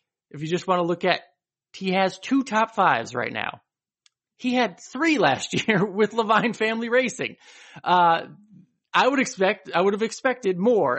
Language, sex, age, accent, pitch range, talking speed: English, male, 30-49, American, 145-190 Hz, 175 wpm